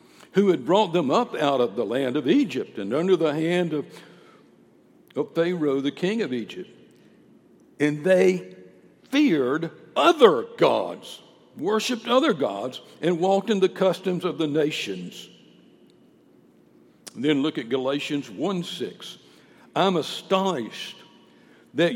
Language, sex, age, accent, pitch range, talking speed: English, male, 60-79, American, 155-230 Hz, 125 wpm